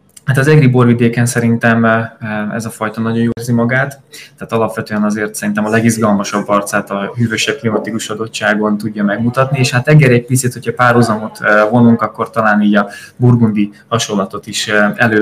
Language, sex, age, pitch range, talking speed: Hungarian, male, 20-39, 100-120 Hz, 160 wpm